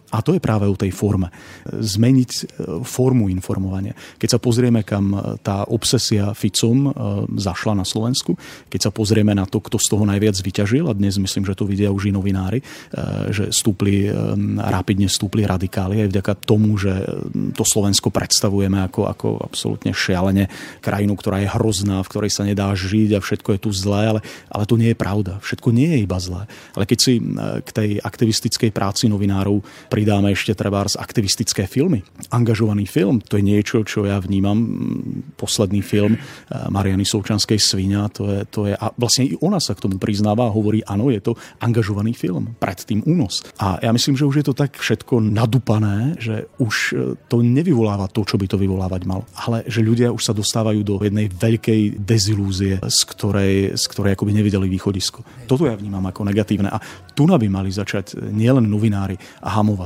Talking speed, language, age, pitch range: 180 wpm, Slovak, 30-49, 100-115 Hz